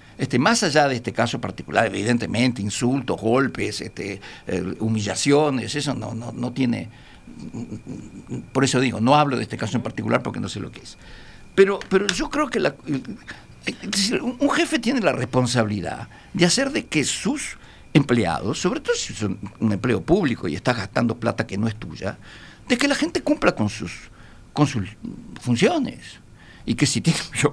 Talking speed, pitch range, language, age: 180 wpm, 115-190 Hz, Spanish, 60-79